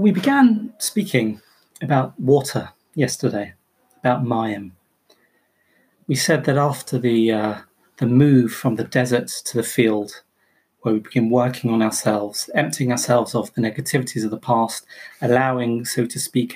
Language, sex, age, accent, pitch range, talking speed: English, male, 30-49, British, 120-150 Hz, 145 wpm